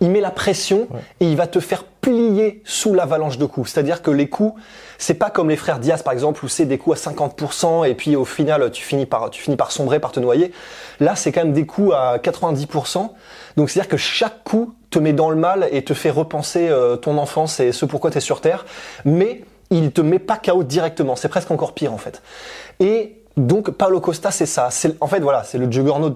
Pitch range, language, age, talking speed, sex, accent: 140-185 Hz, French, 20-39, 240 wpm, male, French